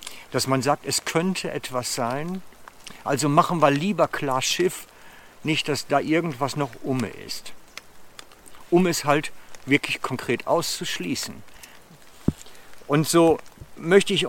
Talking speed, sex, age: 125 wpm, male, 60-79